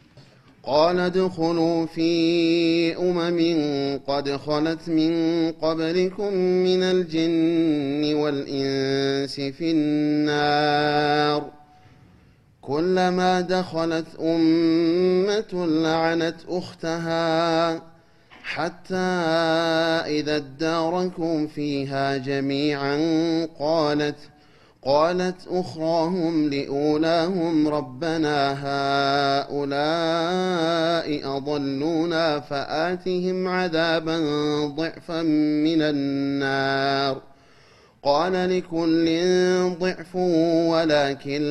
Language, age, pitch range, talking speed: Amharic, 30-49, 145-175 Hz, 60 wpm